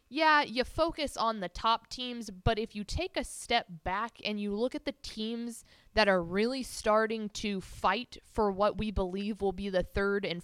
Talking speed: 200 wpm